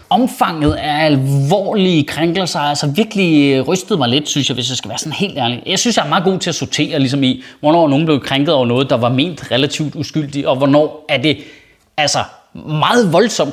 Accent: native